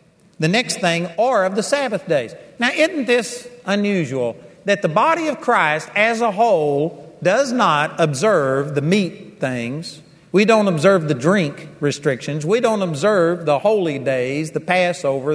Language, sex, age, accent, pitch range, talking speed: English, male, 50-69, American, 150-205 Hz, 155 wpm